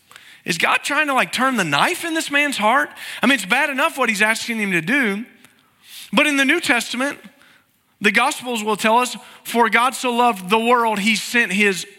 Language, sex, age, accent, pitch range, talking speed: English, male, 40-59, American, 210-275 Hz, 210 wpm